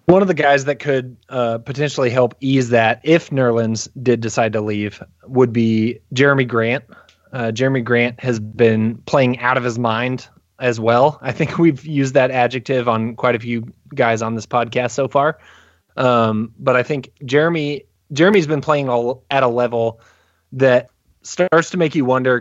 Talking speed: 175 wpm